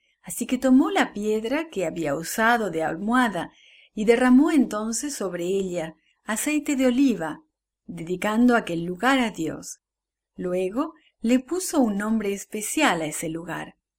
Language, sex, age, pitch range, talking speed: English, female, 40-59, 160-250 Hz, 135 wpm